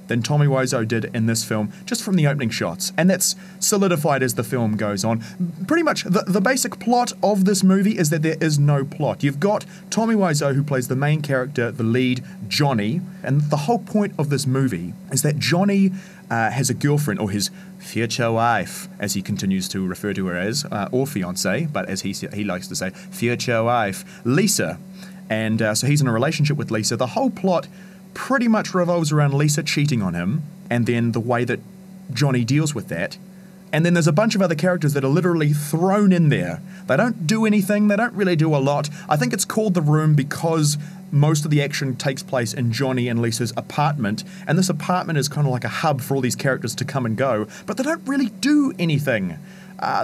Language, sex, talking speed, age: English, male, 215 wpm, 30-49